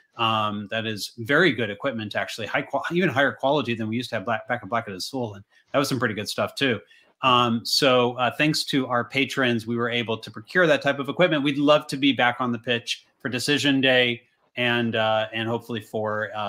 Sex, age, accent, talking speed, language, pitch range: male, 30-49, American, 235 wpm, English, 115-140 Hz